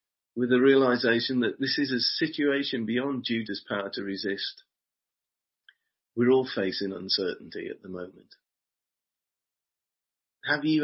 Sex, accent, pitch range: male, British, 100-135 Hz